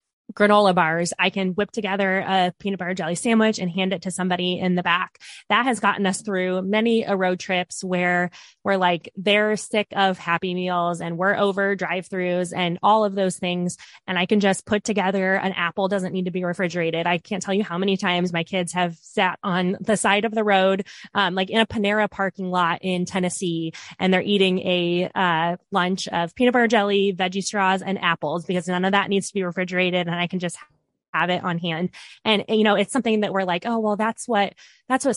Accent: American